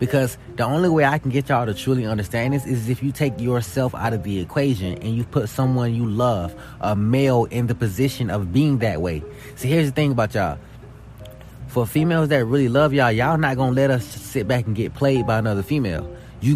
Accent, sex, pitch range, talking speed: American, male, 115-140 Hz, 225 wpm